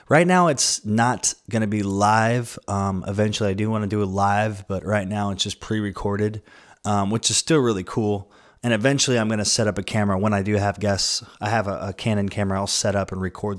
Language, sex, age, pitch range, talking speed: English, male, 20-39, 95-110 Hz, 220 wpm